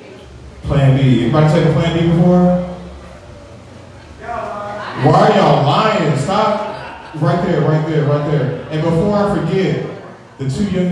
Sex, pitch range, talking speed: male, 135-175 Hz, 145 wpm